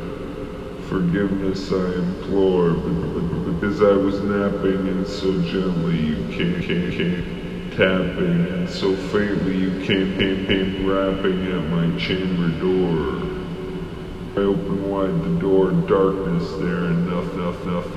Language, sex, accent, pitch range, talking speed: English, female, American, 85-100 Hz, 125 wpm